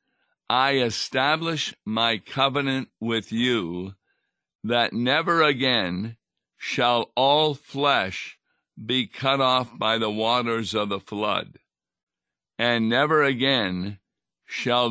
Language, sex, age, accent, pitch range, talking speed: English, male, 60-79, American, 100-120 Hz, 100 wpm